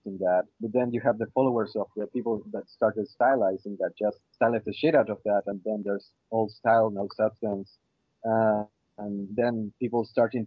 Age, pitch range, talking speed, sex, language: 30-49, 105-120 Hz, 190 wpm, male, English